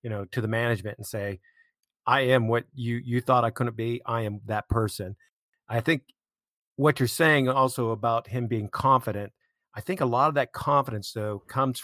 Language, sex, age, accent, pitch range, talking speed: English, male, 50-69, American, 110-130 Hz, 200 wpm